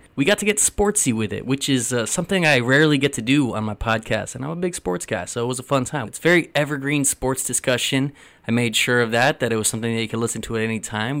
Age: 20-39